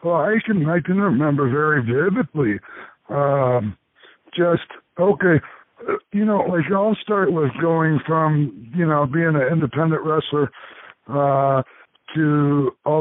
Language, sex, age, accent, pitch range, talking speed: English, male, 60-79, American, 135-170 Hz, 130 wpm